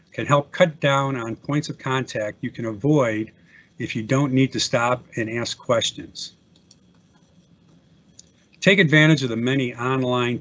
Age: 50-69